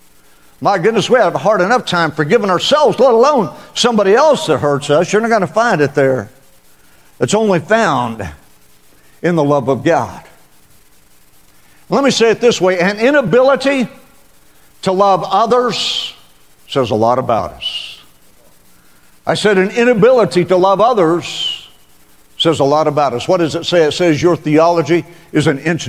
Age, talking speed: 50-69, 165 wpm